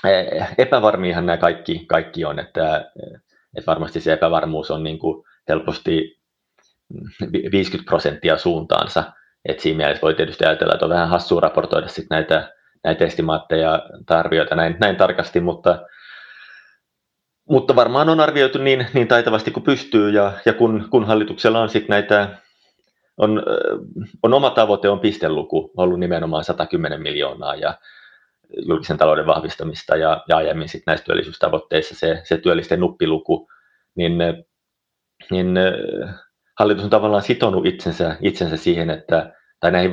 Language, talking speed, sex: Finnish, 135 wpm, male